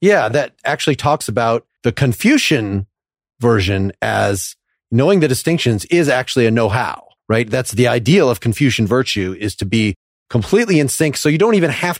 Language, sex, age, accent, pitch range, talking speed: English, male, 30-49, American, 110-145 Hz, 170 wpm